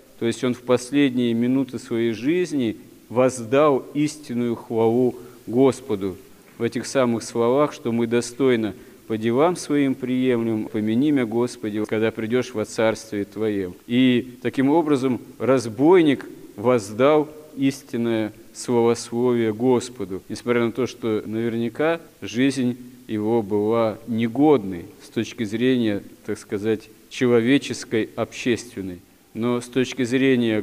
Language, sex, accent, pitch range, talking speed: Russian, male, native, 110-130 Hz, 115 wpm